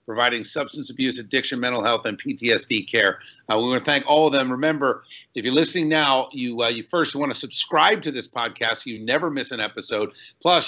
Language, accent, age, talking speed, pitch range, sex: English, American, 50-69, 220 wpm, 130-180 Hz, male